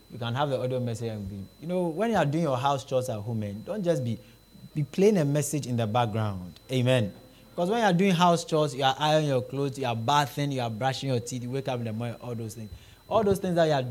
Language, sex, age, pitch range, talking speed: English, male, 20-39, 115-150 Hz, 285 wpm